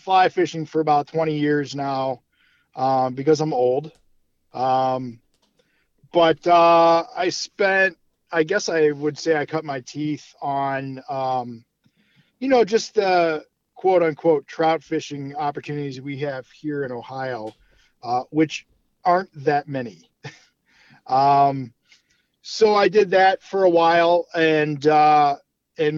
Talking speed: 130 wpm